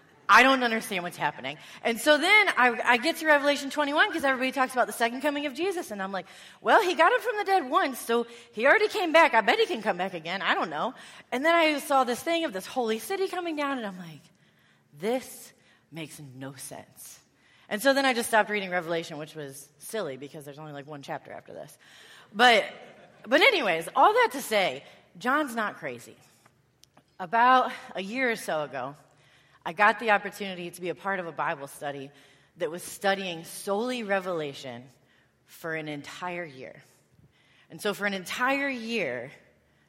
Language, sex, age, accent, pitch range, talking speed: English, female, 30-49, American, 170-260 Hz, 195 wpm